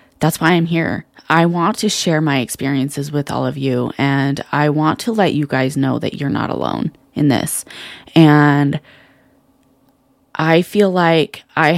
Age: 20-39